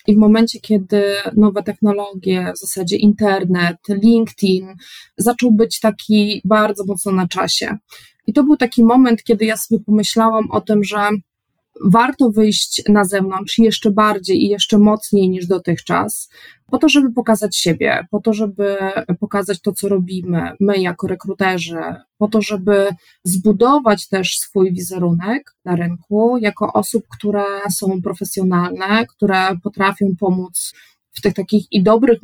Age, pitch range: 20-39, 190-220 Hz